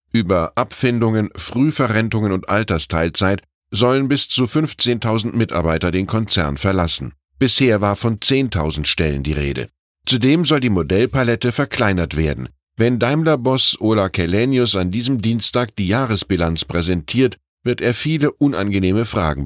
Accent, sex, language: German, male, German